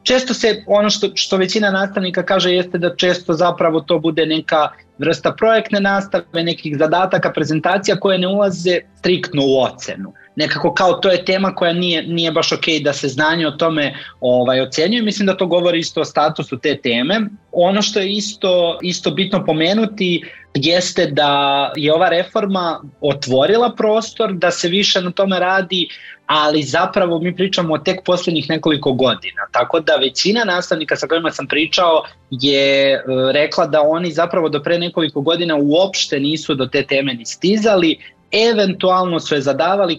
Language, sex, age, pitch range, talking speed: English, male, 30-49, 145-185 Hz, 165 wpm